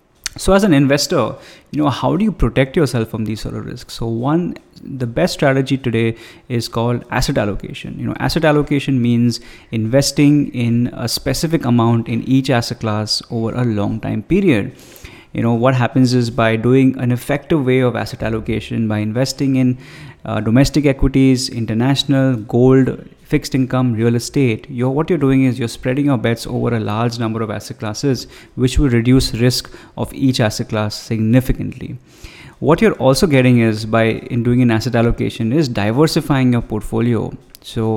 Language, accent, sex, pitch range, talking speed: English, Indian, male, 115-135 Hz, 175 wpm